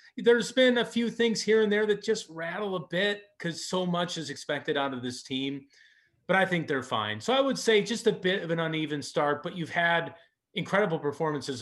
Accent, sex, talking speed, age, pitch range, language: American, male, 220 wpm, 30-49, 130-180 Hz, English